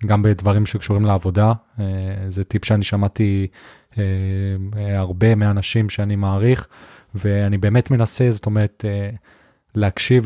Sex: male